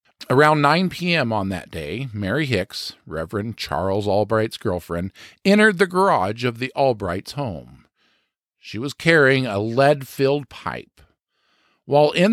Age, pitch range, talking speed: 50-69, 105-155 Hz, 130 wpm